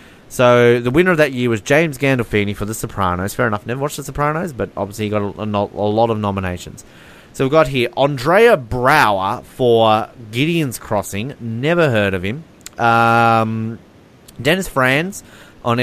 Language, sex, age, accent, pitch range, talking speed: English, male, 30-49, Australian, 105-140 Hz, 165 wpm